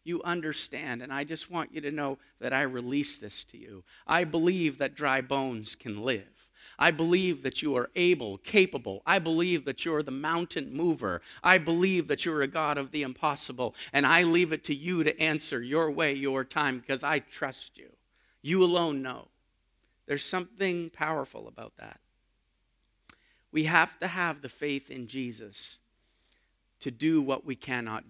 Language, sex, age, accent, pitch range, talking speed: English, male, 50-69, American, 115-160 Hz, 175 wpm